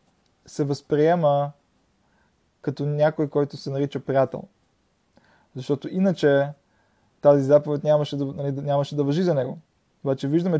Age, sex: 20-39, male